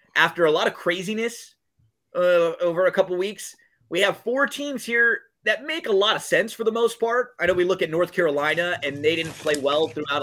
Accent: American